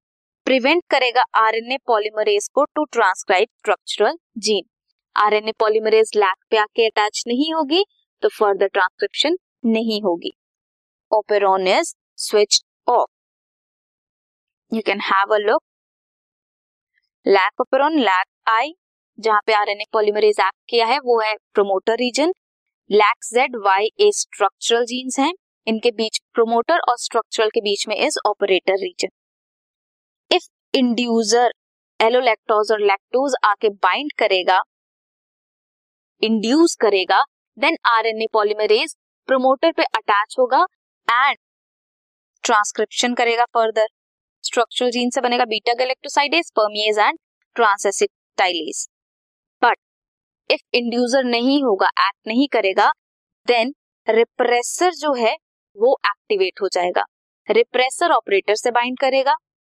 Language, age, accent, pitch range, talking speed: Hindi, 20-39, native, 215-275 Hz, 95 wpm